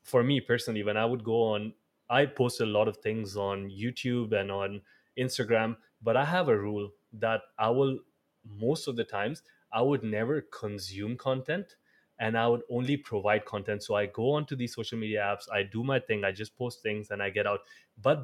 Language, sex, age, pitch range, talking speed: English, male, 20-39, 105-130 Hz, 205 wpm